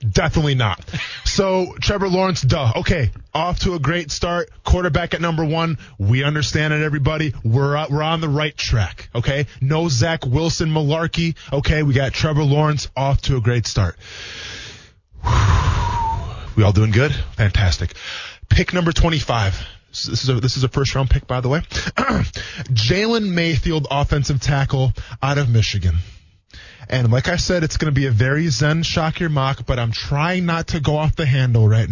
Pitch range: 115-145 Hz